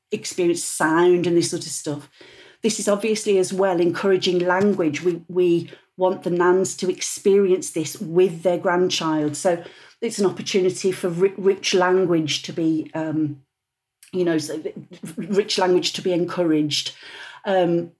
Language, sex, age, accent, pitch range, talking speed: English, female, 40-59, British, 165-190 Hz, 145 wpm